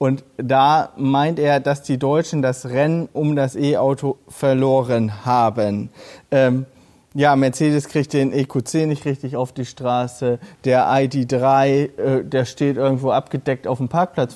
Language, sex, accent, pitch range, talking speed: German, male, German, 130-150 Hz, 145 wpm